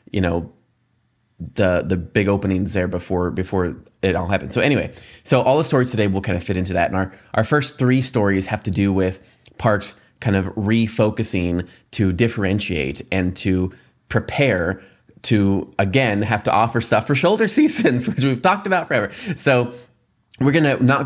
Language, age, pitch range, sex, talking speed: English, 20-39, 95-115 Hz, male, 180 wpm